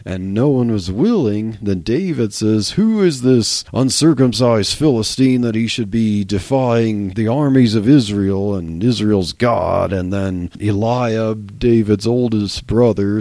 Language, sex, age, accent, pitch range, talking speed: English, male, 40-59, American, 100-130 Hz, 140 wpm